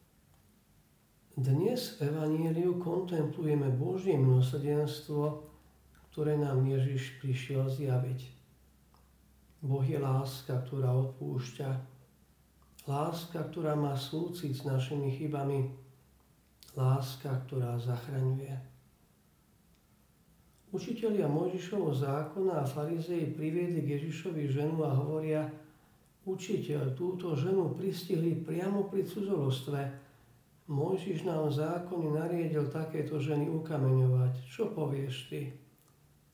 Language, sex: Slovak, male